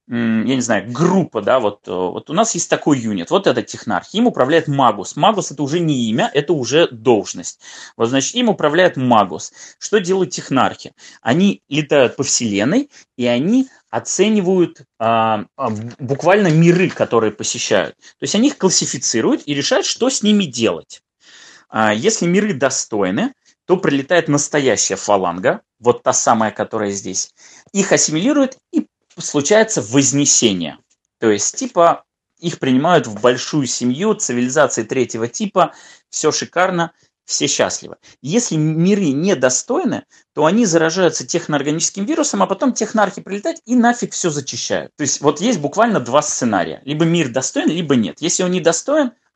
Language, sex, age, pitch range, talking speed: Russian, male, 30-49, 130-200 Hz, 150 wpm